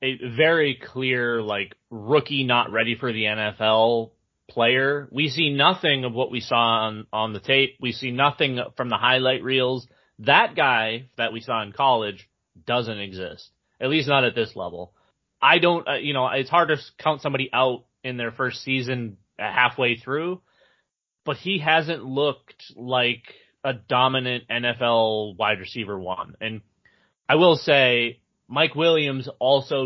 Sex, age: male, 30-49